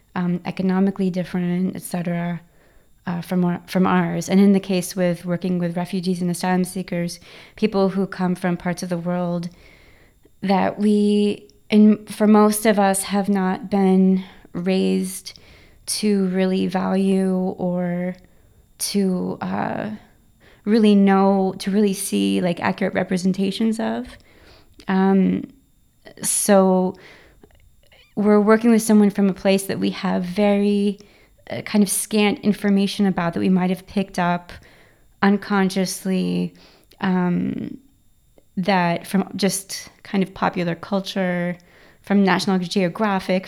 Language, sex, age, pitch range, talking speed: English, female, 20-39, 180-200 Hz, 125 wpm